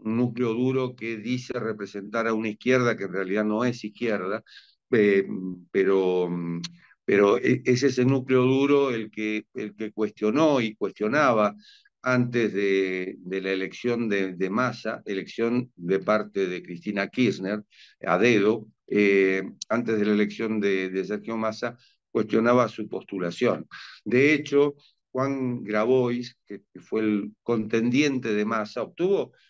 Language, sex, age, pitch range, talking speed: English, male, 50-69, 105-125 Hz, 140 wpm